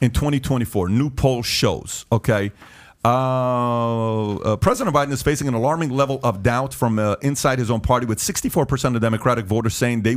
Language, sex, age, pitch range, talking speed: English, male, 40-59, 115-140 Hz, 175 wpm